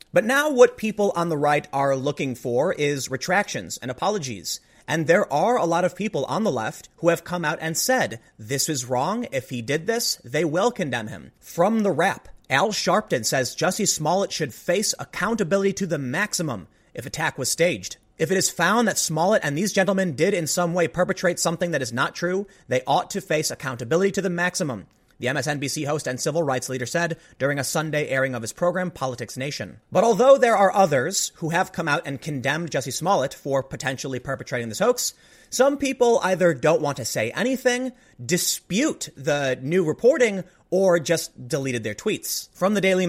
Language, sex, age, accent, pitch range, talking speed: English, male, 30-49, American, 140-190 Hz, 195 wpm